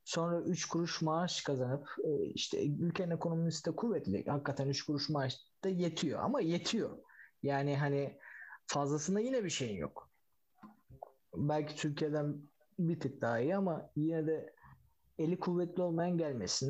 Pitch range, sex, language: 145-210 Hz, male, Turkish